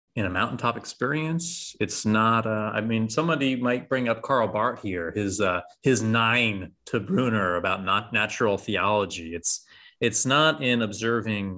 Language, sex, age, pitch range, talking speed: English, male, 30-49, 95-125 Hz, 160 wpm